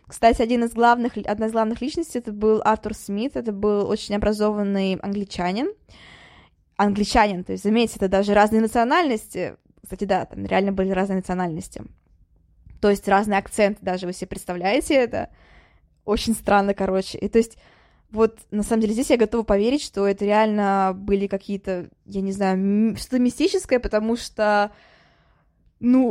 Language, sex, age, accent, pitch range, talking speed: Russian, female, 20-39, native, 200-230 Hz, 155 wpm